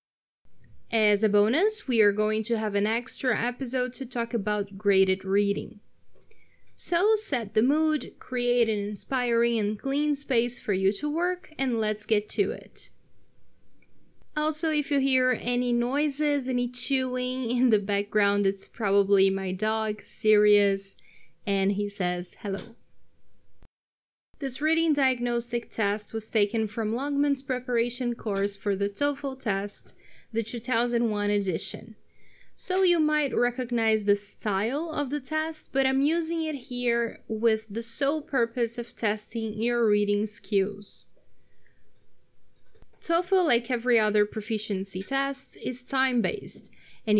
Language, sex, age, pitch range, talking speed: Portuguese, female, 20-39, 210-270 Hz, 130 wpm